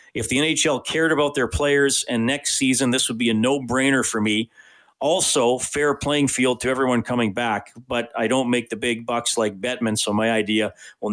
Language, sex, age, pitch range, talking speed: English, male, 40-59, 115-145 Hz, 205 wpm